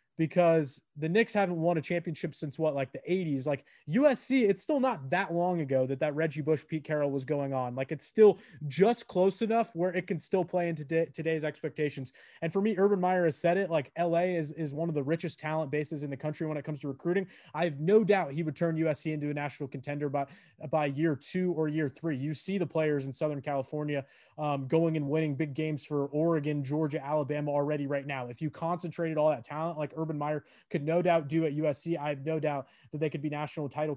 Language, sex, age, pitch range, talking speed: English, male, 20-39, 145-180 Hz, 235 wpm